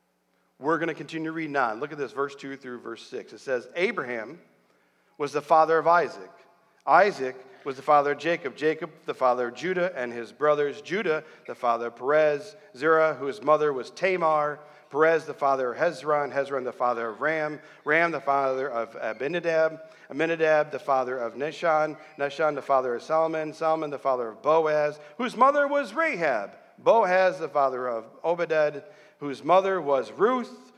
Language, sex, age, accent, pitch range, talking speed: English, male, 40-59, American, 135-170 Hz, 175 wpm